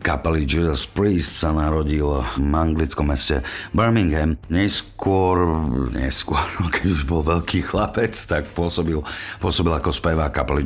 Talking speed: 130 wpm